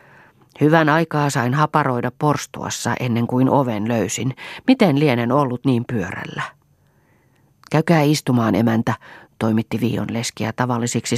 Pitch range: 120-150 Hz